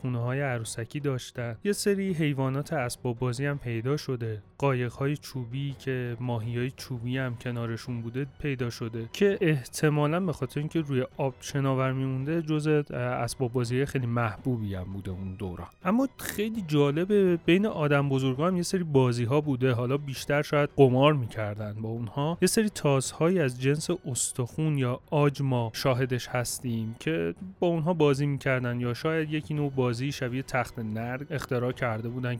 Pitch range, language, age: 120-155 Hz, Persian, 30-49